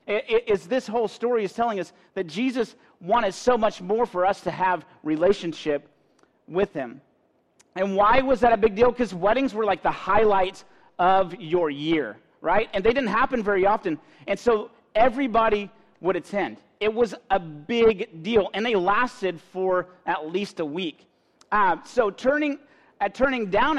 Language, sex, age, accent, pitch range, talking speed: English, male, 40-59, American, 165-225 Hz, 175 wpm